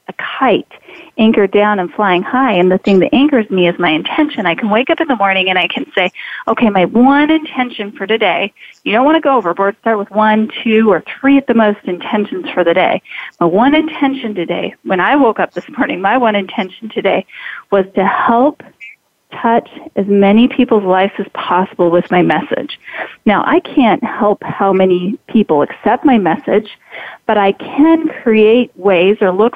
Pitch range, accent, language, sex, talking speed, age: 190-245 Hz, American, English, female, 195 wpm, 40-59